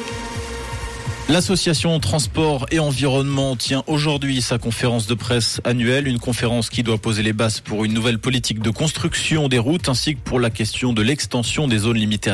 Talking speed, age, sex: 175 wpm, 20-39, male